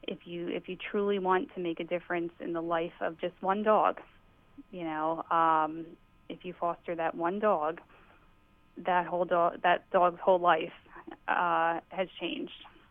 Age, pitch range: 30-49, 165-190 Hz